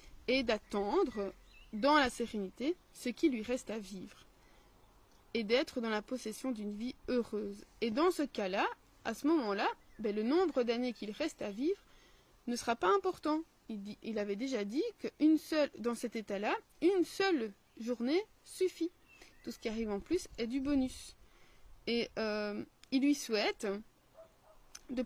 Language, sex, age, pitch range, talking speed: French, female, 20-39, 215-290 Hz, 155 wpm